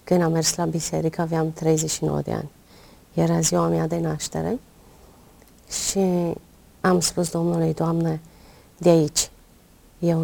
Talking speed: 130 wpm